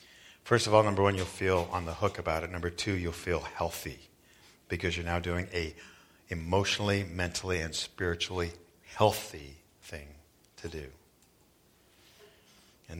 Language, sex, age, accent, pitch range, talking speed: English, male, 50-69, American, 80-95 Hz, 145 wpm